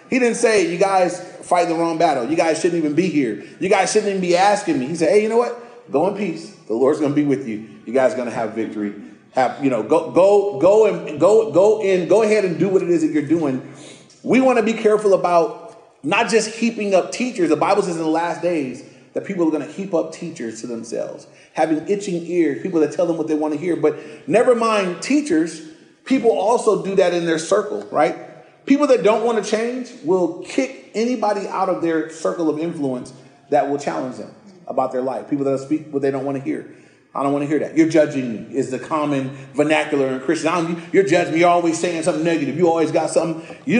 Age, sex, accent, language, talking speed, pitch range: 30-49, male, American, English, 235 wpm, 155-215 Hz